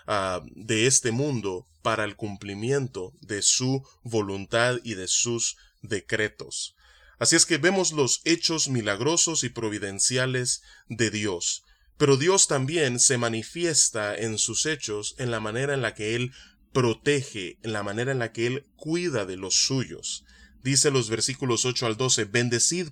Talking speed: 150 wpm